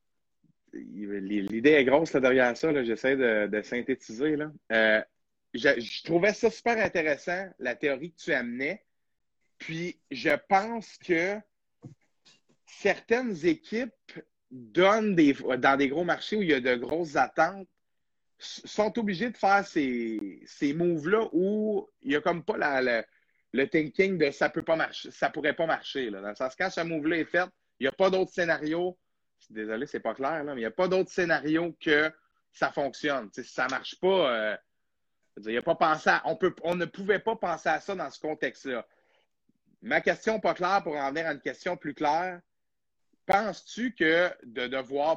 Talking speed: 185 wpm